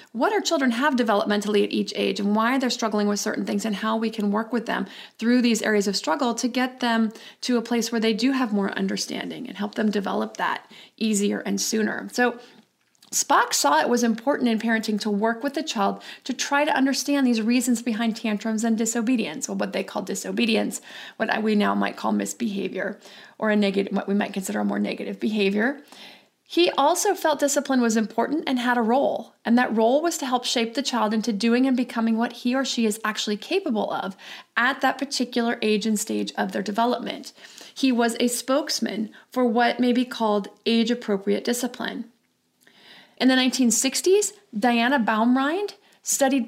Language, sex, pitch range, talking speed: English, female, 215-255 Hz, 195 wpm